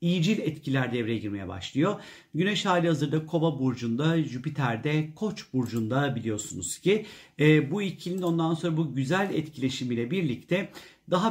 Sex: male